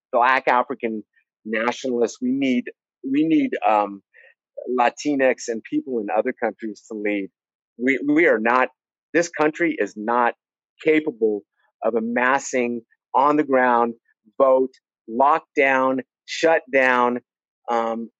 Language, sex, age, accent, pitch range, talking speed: English, male, 50-69, American, 115-160 Hz, 110 wpm